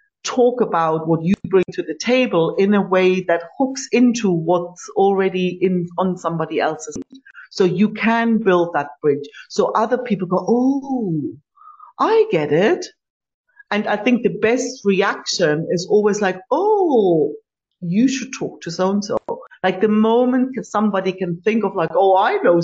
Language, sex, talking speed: English, female, 160 wpm